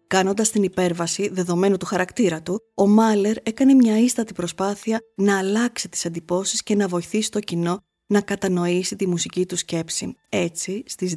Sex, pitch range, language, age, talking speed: female, 175-220 Hz, Greek, 20-39, 160 wpm